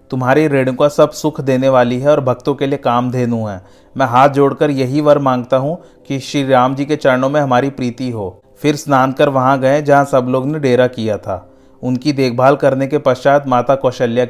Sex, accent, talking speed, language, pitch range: male, native, 205 wpm, Hindi, 125-145 Hz